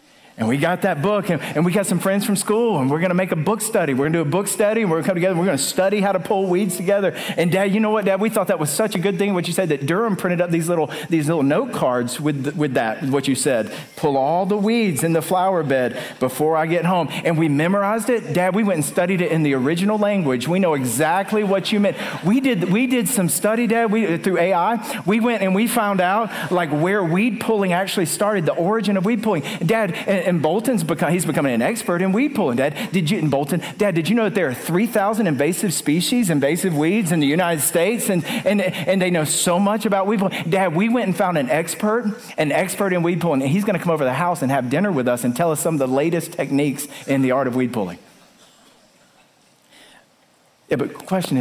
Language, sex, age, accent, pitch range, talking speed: English, male, 40-59, American, 160-210 Hz, 260 wpm